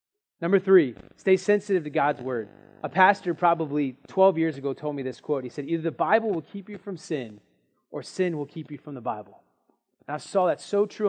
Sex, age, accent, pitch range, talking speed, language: male, 30-49, American, 145-210 Hz, 220 wpm, English